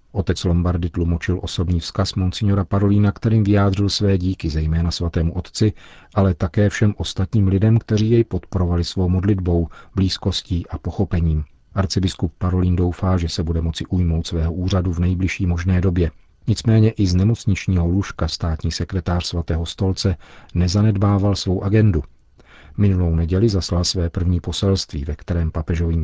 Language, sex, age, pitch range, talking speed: Czech, male, 40-59, 85-100 Hz, 145 wpm